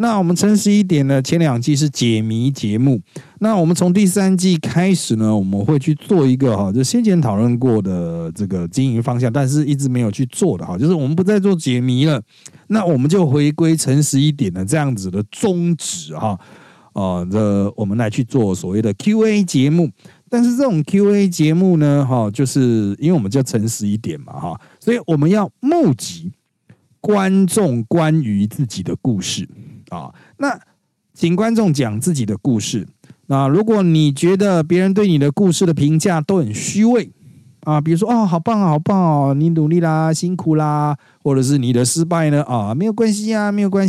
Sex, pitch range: male, 125-185 Hz